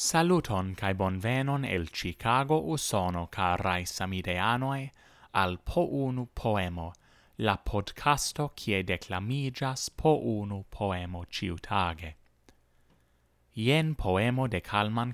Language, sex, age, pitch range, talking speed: English, male, 30-49, 90-115 Hz, 95 wpm